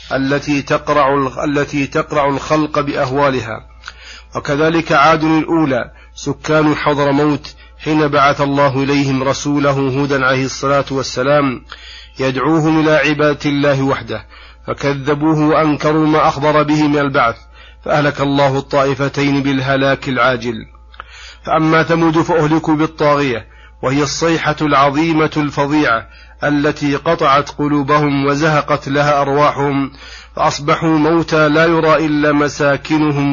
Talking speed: 105 wpm